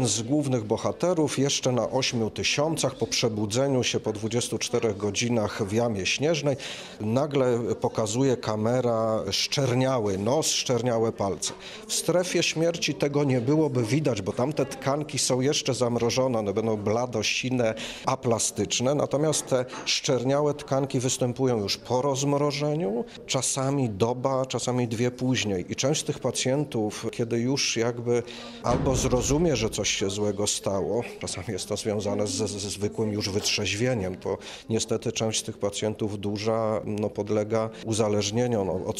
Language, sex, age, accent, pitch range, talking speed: Polish, male, 40-59, native, 105-130 Hz, 135 wpm